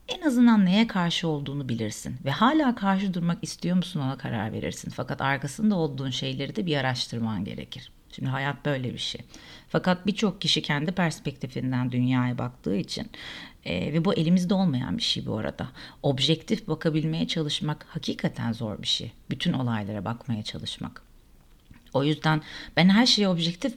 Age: 40-59